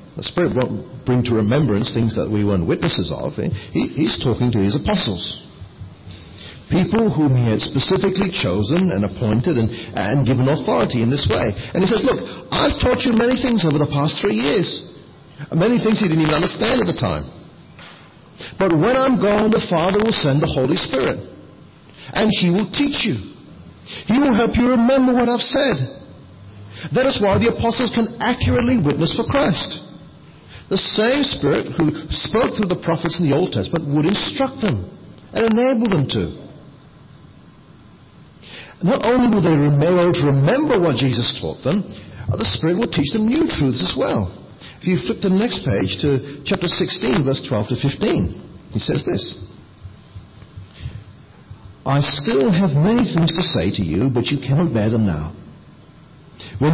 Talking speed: 170 wpm